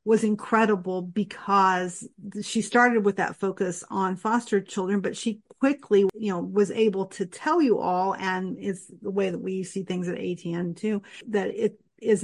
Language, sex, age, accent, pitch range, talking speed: English, female, 50-69, American, 185-210 Hz, 175 wpm